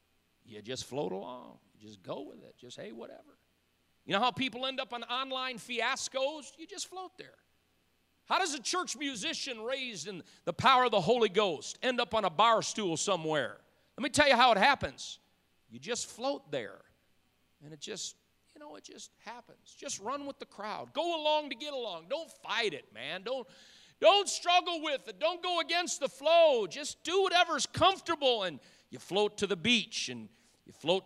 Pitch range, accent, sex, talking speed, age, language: 180-295 Hz, American, male, 190 wpm, 50-69, English